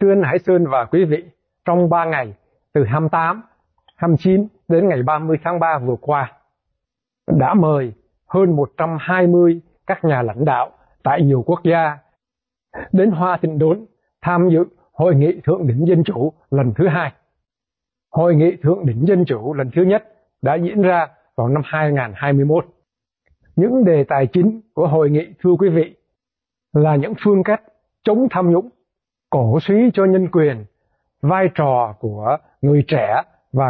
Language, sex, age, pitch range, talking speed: Vietnamese, male, 60-79, 145-180 Hz, 160 wpm